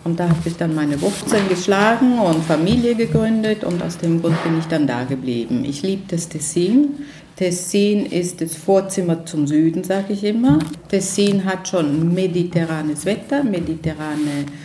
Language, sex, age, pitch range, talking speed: German, female, 50-69, 165-210 Hz, 160 wpm